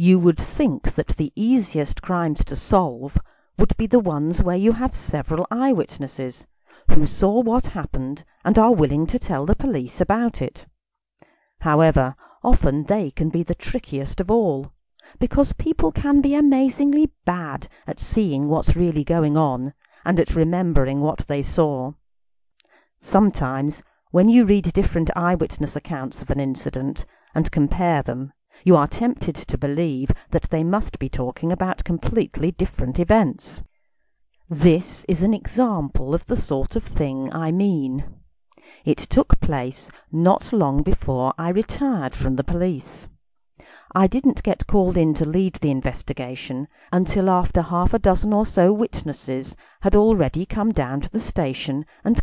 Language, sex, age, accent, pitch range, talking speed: English, female, 40-59, British, 145-205 Hz, 150 wpm